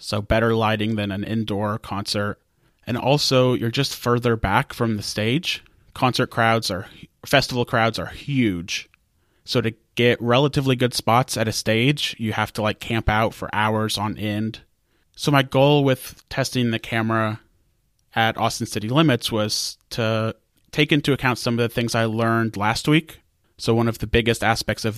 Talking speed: 175 wpm